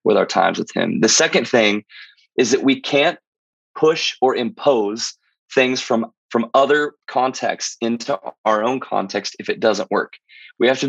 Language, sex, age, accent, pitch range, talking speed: English, male, 20-39, American, 110-135 Hz, 170 wpm